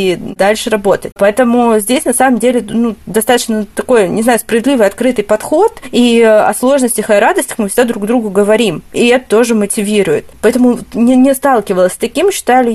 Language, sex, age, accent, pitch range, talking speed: Russian, female, 20-39, native, 210-240 Hz, 170 wpm